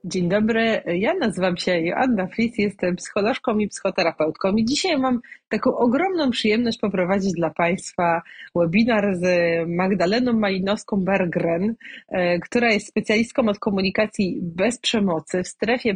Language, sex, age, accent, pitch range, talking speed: Polish, female, 30-49, native, 180-225 Hz, 125 wpm